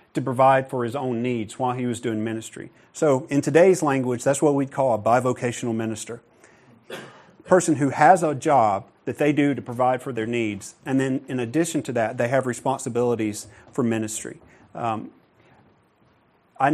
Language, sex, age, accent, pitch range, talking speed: English, male, 40-59, American, 115-145 Hz, 175 wpm